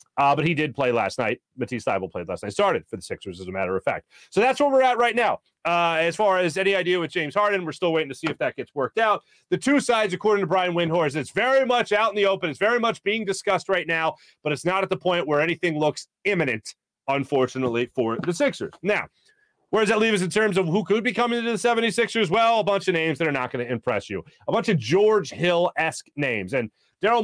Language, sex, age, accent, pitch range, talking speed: English, male, 30-49, American, 155-215 Hz, 260 wpm